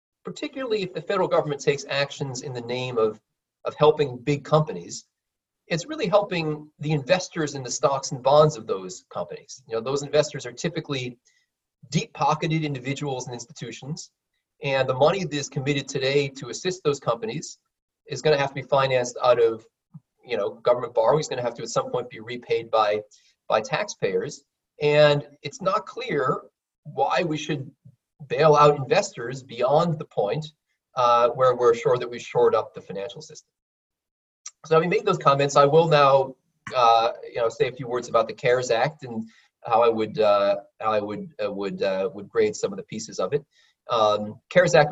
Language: English